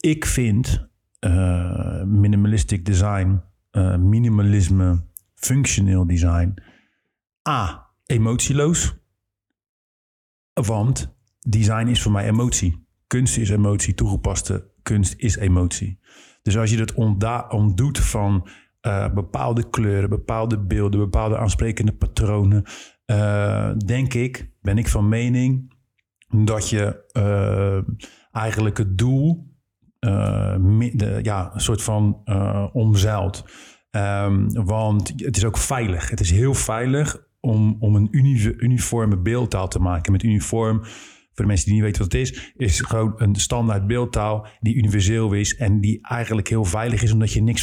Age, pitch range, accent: 50-69, 100-115 Hz, Dutch